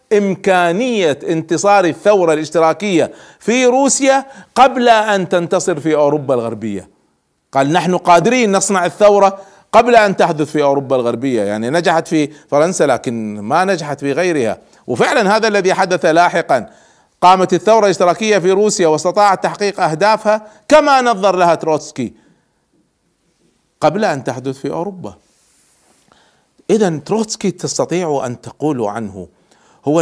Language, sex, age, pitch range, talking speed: Arabic, male, 40-59, 120-190 Hz, 120 wpm